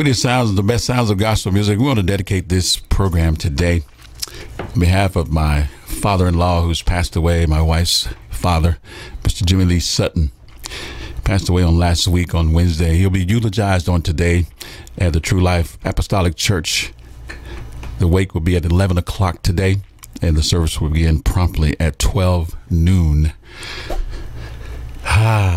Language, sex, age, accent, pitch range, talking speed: English, male, 50-69, American, 80-100 Hz, 155 wpm